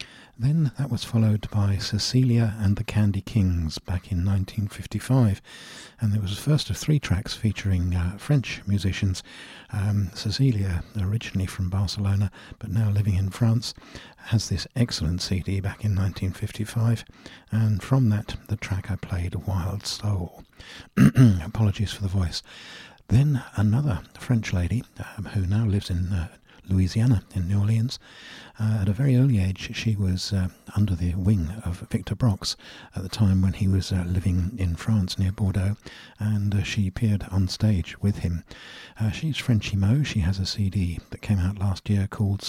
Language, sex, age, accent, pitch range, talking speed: English, male, 60-79, British, 95-110 Hz, 165 wpm